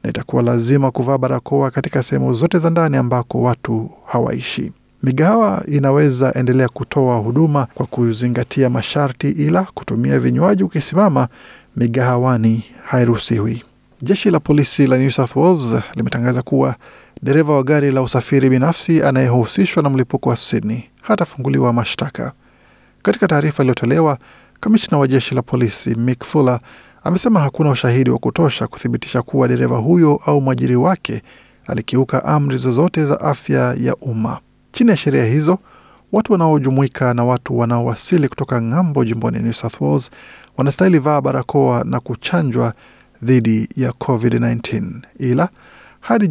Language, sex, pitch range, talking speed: Swahili, male, 120-150 Hz, 130 wpm